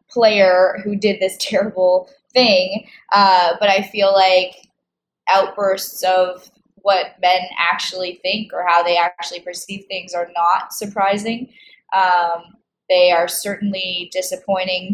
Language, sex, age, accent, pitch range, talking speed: English, female, 20-39, American, 180-220 Hz, 125 wpm